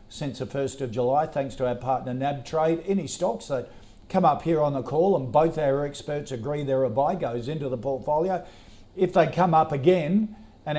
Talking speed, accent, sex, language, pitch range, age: 210 wpm, Australian, male, English, 120-150 Hz, 50-69